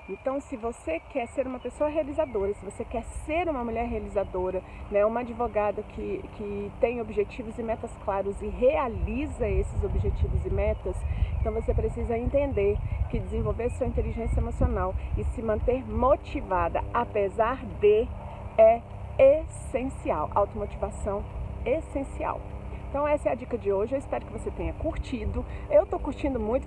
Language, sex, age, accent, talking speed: Portuguese, female, 40-59, Brazilian, 150 wpm